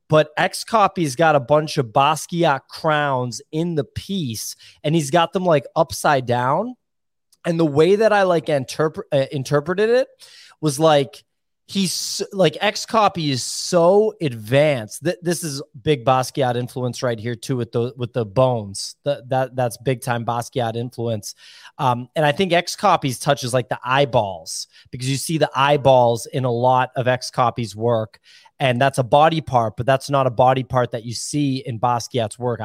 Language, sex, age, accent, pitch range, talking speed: English, male, 20-39, American, 125-155 Hz, 180 wpm